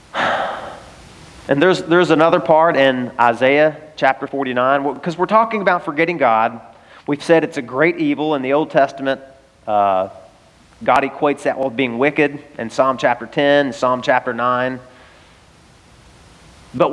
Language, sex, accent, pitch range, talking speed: English, male, American, 130-175 Hz, 145 wpm